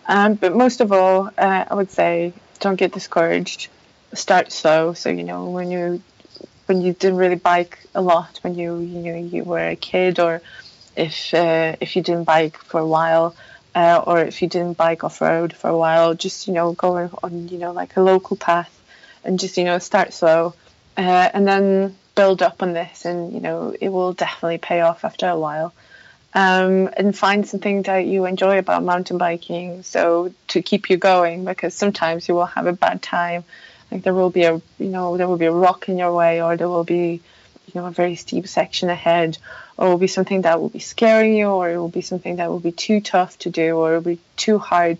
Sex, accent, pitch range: female, British, 170-185 Hz